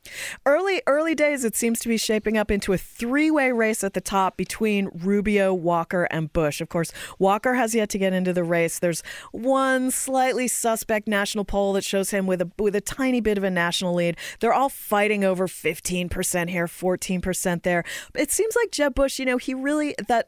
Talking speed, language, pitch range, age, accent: 205 wpm, English, 170-225 Hz, 40-59, American